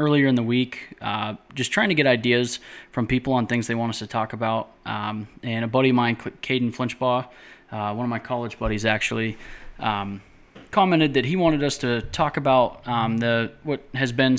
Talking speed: 205 wpm